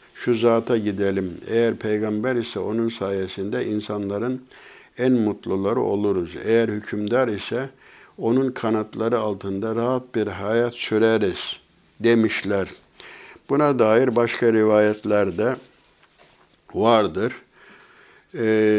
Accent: native